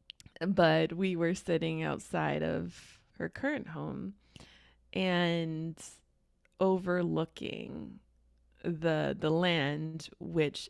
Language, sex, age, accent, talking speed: English, female, 20-39, American, 85 wpm